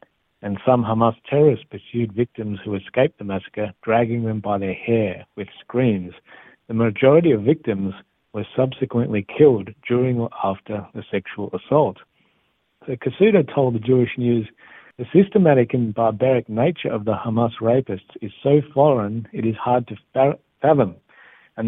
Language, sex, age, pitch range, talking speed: Hebrew, male, 60-79, 105-130 Hz, 145 wpm